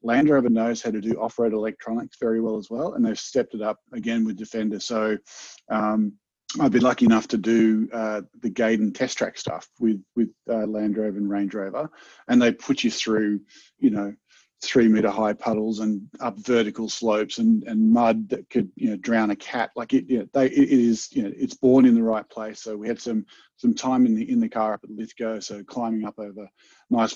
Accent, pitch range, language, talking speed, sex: Australian, 110-140 Hz, English, 225 wpm, male